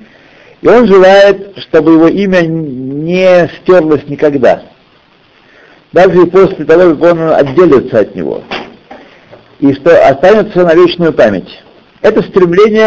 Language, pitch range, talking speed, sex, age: Russian, 140-180 Hz, 120 wpm, male, 60-79